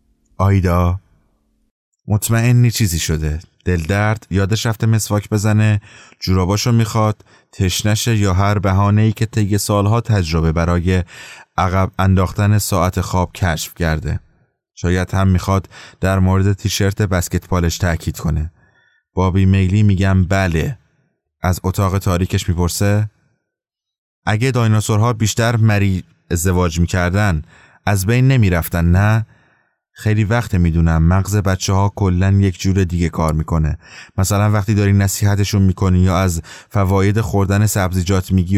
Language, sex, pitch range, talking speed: English, male, 90-105 Hz, 125 wpm